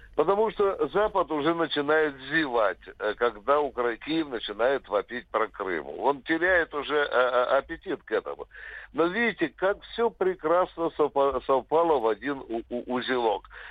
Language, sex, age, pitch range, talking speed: Russian, male, 60-79, 130-170 Hz, 120 wpm